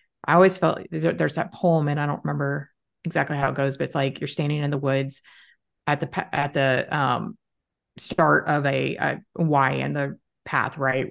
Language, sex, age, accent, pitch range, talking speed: English, female, 30-49, American, 140-175 Hz, 195 wpm